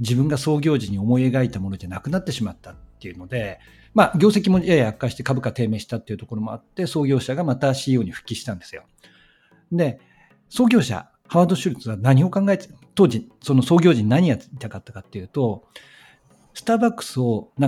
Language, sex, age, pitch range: Japanese, male, 60-79, 110-165 Hz